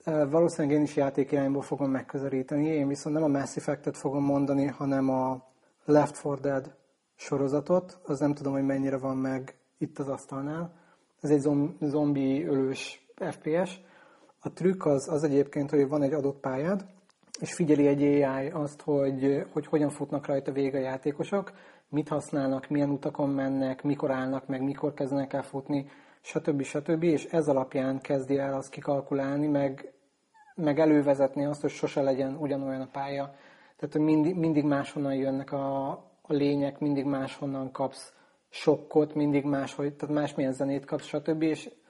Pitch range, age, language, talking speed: 135-150 Hz, 30-49, Hungarian, 150 wpm